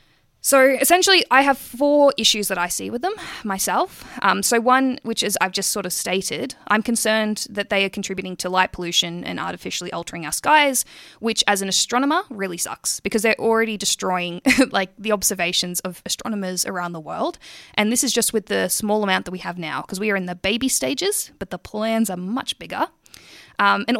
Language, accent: English, Australian